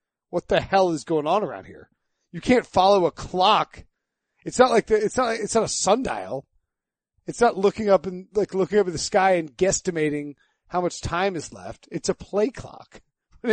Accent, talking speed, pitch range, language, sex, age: American, 205 wpm, 150-190 Hz, English, male, 40-59